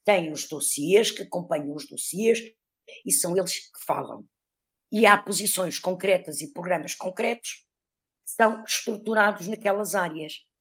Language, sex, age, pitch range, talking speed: Portuguese, female, 50-69, 165-205 Hz, 135 wpm